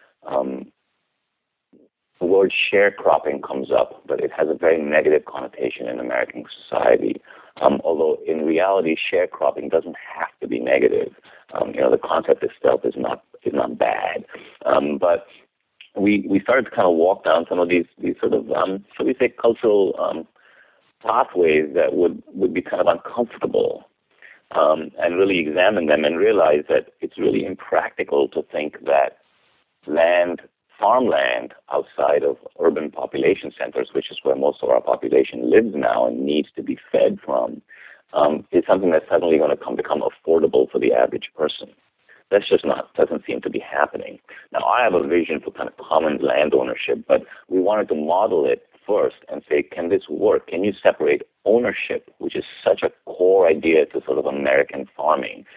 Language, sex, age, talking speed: English, male, 50-69, 175 wpm